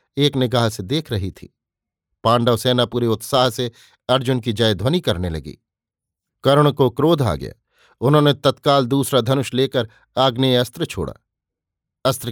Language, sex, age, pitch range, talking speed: Hindi, male, 50-69, 115-135 Hz, 150 wpm